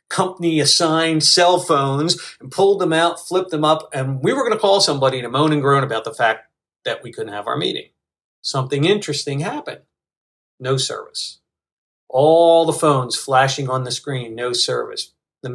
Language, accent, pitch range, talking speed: English, American, 130-170 Hz, 180 wpm